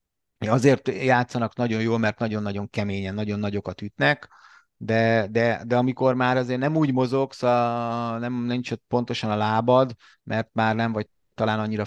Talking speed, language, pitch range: 160 wpm, Hungarian, 105-130 Hz